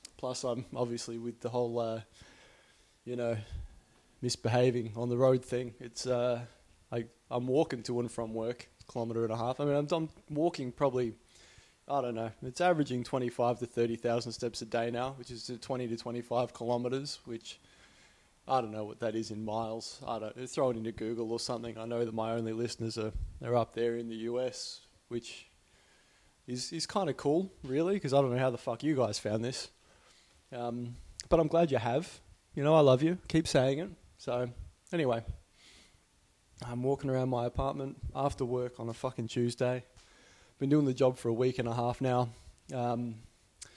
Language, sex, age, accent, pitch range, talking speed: English, male, 20-39, Australian, 115-130 Hz, 190 wpm